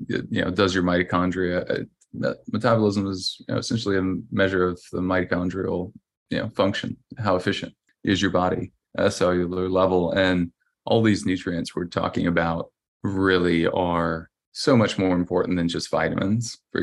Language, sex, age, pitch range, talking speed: English, male, 20-39, 90-100 Hz, 165 wpm